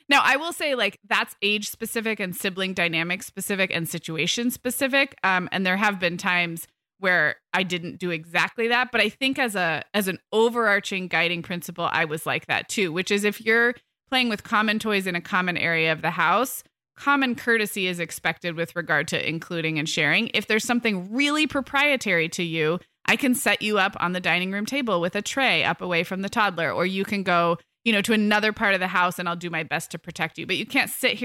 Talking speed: 225 wpm